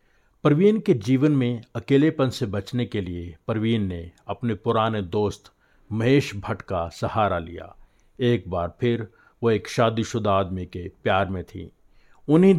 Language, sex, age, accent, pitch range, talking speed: Hindi, male, 50-69, native, 100-125 Hz, 150 wpm